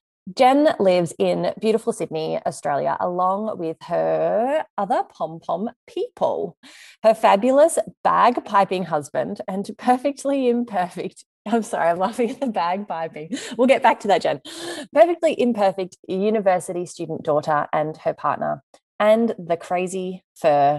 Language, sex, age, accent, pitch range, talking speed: English, female, 20-39, Australian, 160-230 Hz, 135 wpm